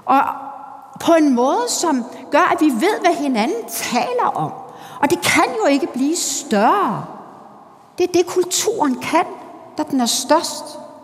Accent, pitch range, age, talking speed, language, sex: native, 225-315 Hz, 60-79, 160 wpm, Danish, female